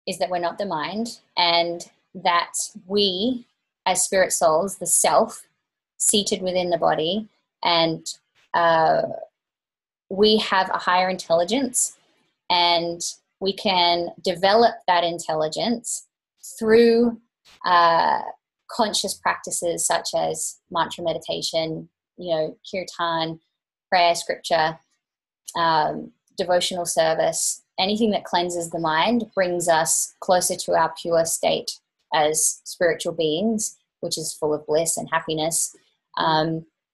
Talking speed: 115 wpm